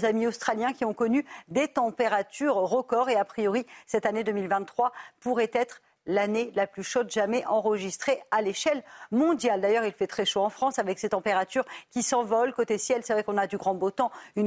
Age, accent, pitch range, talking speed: 50-69, French, 215-255 Hz, 200 wpm